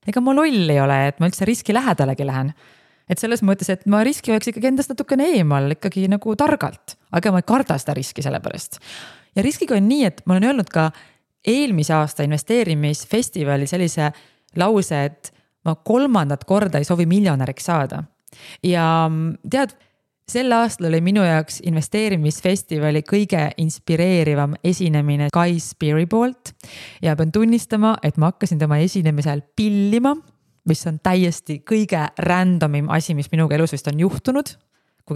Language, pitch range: English, 155-210 Hz